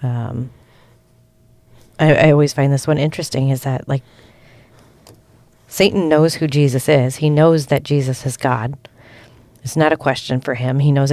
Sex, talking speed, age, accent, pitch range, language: female, 160 wpm, 30-49, American, 125-150 Hz, English